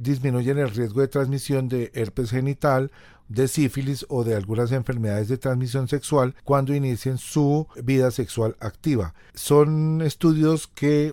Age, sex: 40-59, male